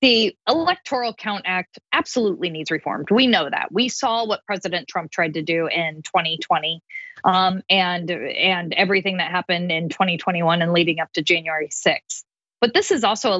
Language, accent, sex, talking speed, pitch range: English, American, female, 175 wpm, 180-225 Hz